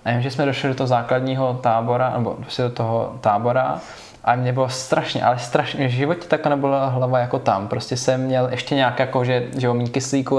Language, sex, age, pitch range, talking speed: Czech, male, 20-39, 115-135 Hz, 190 wpm